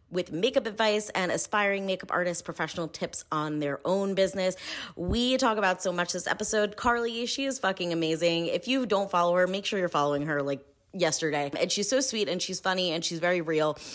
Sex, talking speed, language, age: female, 205 wpm, English, 20-39